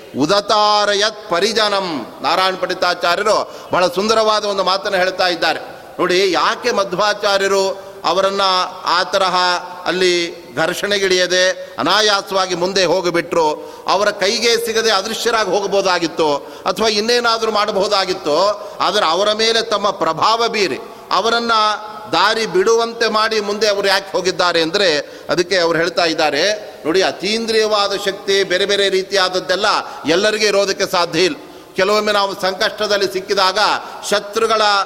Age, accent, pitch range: 40-59, native, 185-215 Hz